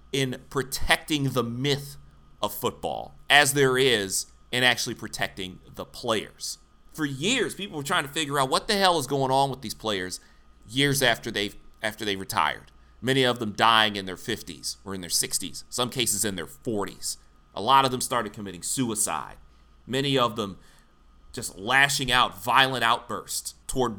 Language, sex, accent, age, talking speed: English, male, American, 30-49, 175 wpm